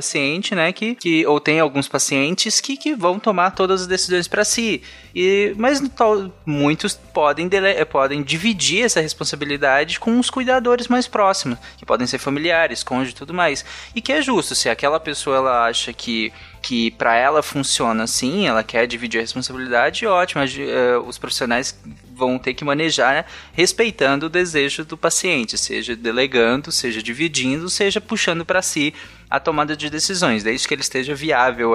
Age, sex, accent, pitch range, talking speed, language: 20-39, male, Brazilian, 125-170 Hz, 175 wpm, Portuguese